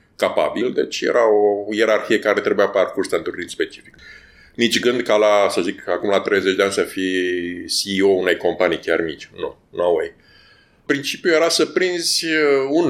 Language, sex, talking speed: English, male, 170 wpm